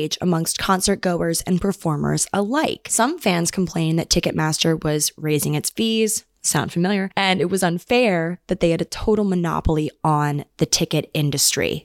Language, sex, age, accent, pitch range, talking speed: English, female, 20-39, American, 155-205 Hz, 155 wpm